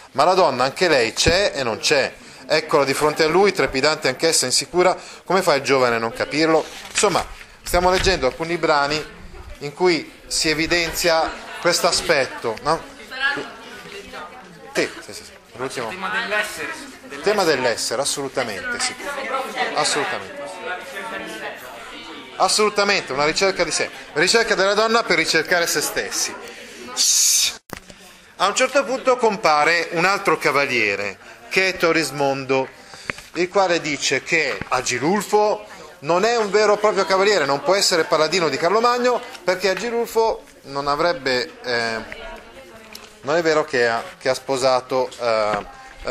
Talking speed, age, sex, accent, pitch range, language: 130 wpm, 30-49, male, native, 135-190 Hz, Italian